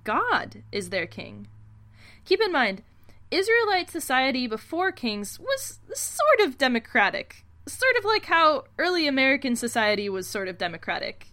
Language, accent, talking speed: English, American, 140 wpm